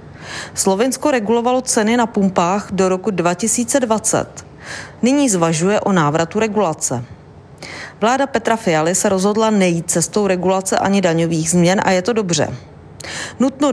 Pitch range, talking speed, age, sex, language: 170-220 Hz, 125 wpm, 40-59, female, Czech